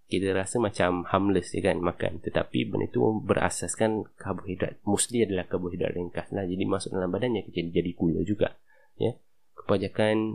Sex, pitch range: male, 85-100 Hz